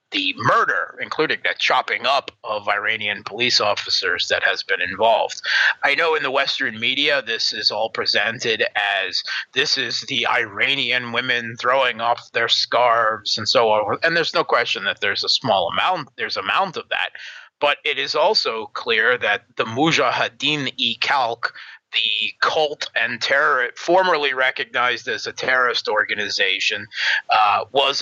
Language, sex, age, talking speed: English, male, 30-49, 150 wpm